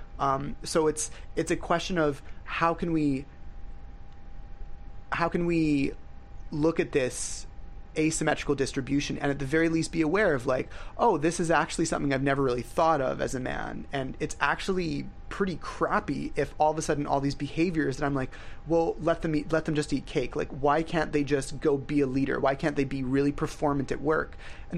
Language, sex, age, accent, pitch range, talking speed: English, male, 30-49, American, 130-155 Hz, 200 wpm